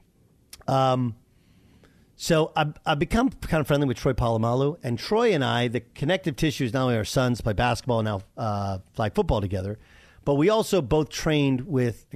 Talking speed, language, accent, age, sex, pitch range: 190 wpm, English, American, 50-69, male, 115-165 Hz